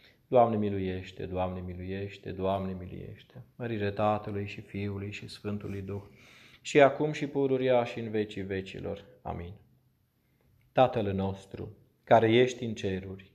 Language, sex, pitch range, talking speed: Romanian, male, 100-125 Hz, 125 wpm